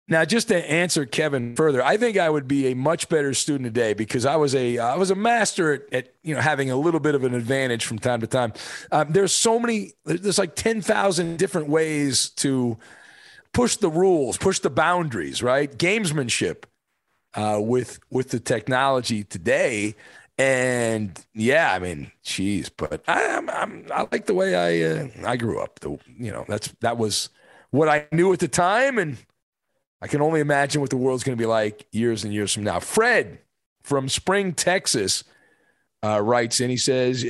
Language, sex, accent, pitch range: English, male, American, 120-175 Hz